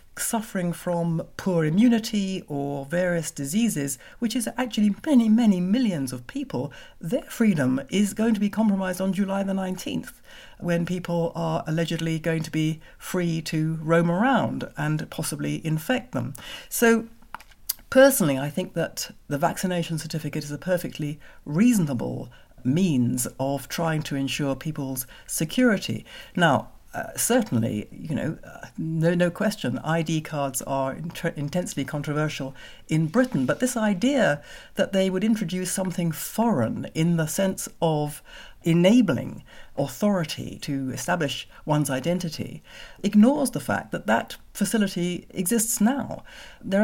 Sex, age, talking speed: female, 60-79, 135 wpm